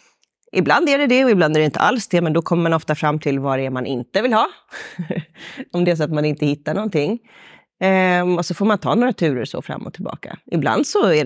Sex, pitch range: female, 155-225 Hz